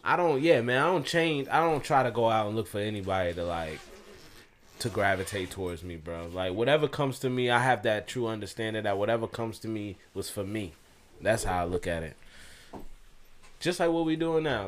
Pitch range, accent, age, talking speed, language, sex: 100-130 Hz, American, 20-39, 220 wpm, English, male